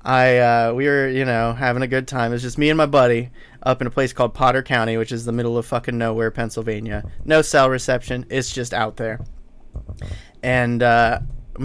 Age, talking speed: 30-49, 210 wpm